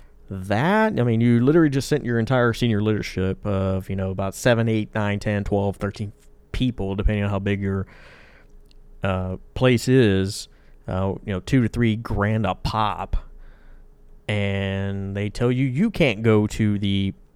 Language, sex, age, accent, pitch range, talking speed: English, male, 30-49, American, 95-120 Hz, 165 wpm